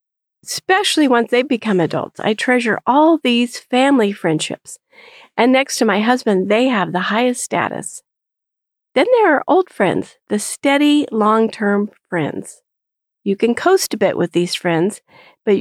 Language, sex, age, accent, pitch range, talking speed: English, female, 50-69, American, 195-275 Hz, 150 wpm